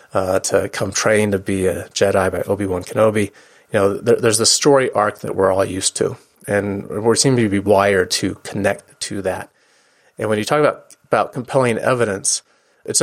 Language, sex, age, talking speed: English, male, 30-49, 190 wpm